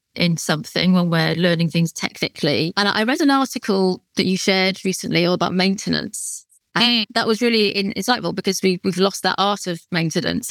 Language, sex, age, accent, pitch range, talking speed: English, female, 30-49, British, 180-210 Hz, 170 wpm